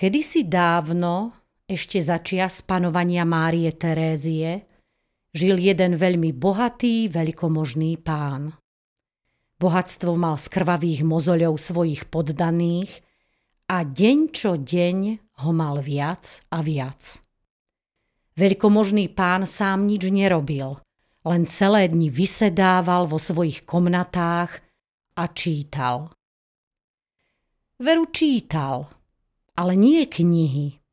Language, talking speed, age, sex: Slovak, 95 wpm, 40-59, female